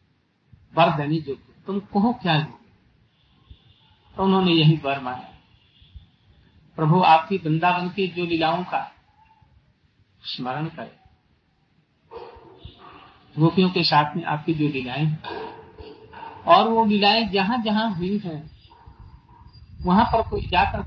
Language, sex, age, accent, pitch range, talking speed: Hindi, male, 50-69, native, 120-195 Hz, 105 wpm